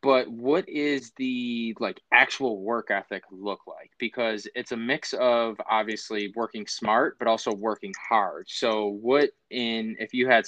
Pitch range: 105-120 Hz